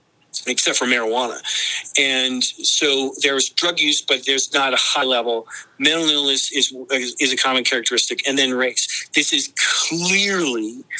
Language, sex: English, male